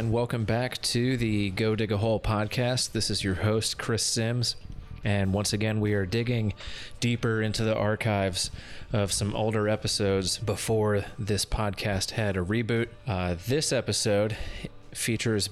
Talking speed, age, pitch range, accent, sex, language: 155 wpm, 30-49, 100-120 Hz, American, male, English